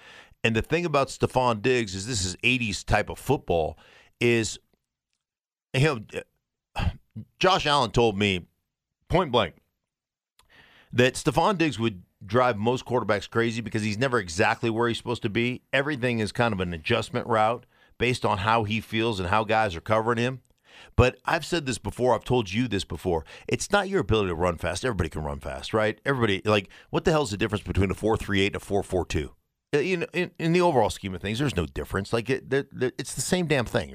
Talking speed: 205 wpm